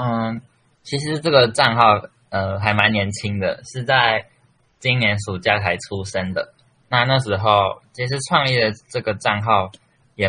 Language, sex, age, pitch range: Chinese, male, 20-39, 100-120 Hz